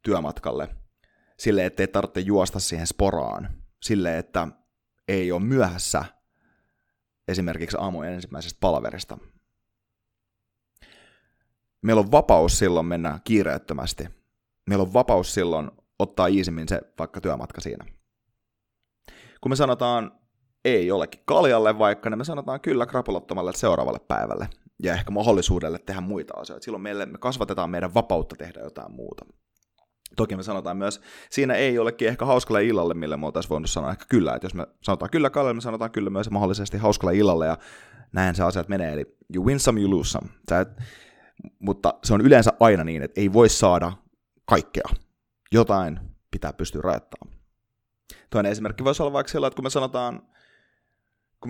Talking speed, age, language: 155 wpm, 30-49, Finnish